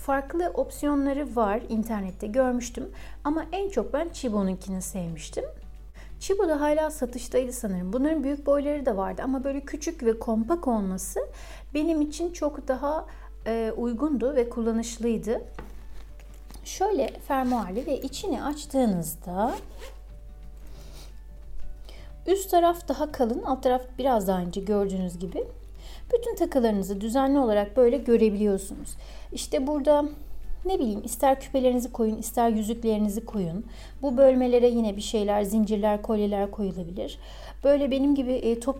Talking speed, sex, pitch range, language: 120 wpm, female, 220-280 Hz, Turkish